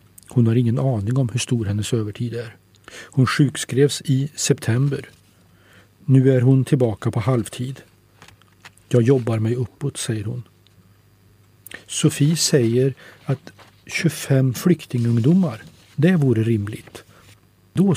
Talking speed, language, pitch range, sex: 115 wpm, Swedish, 105-135 Hz, male